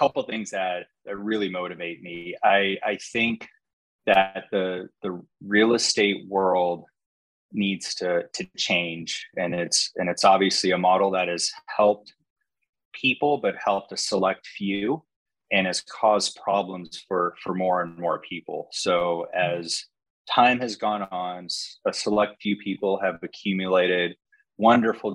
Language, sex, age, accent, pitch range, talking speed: English, male, 20-39, American, 85-100 Hz, 145 wpm